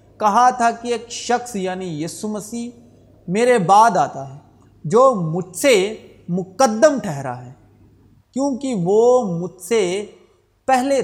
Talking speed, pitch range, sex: 125 wpm, 150-235 Hz, male